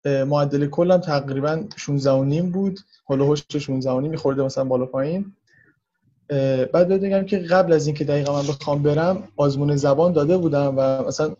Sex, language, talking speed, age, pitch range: male, Persian, 165 wpm, 20-39, 135-165 Hz